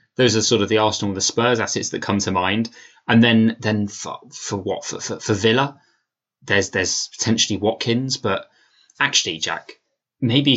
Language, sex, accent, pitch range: English, male, British, 105-130 Hz